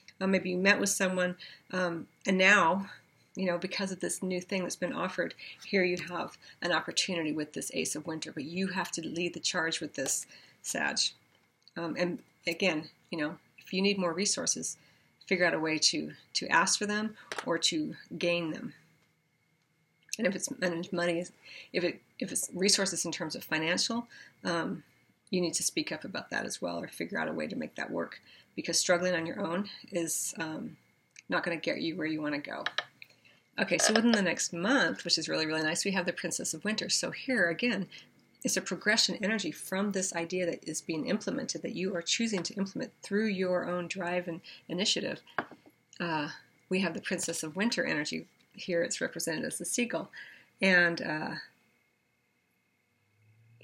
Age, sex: 40-59, female